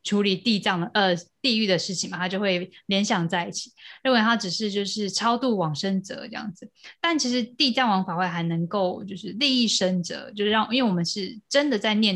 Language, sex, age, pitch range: Chinese, female, 20-39, 185-225 Hz